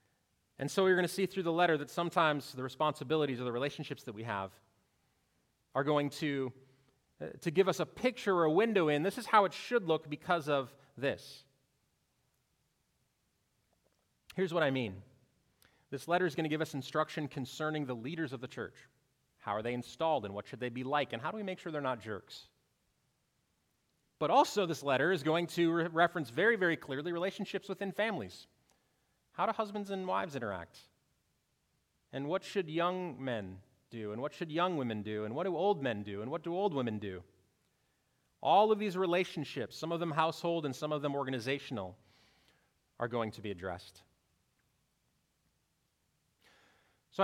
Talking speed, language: 180 wpm, English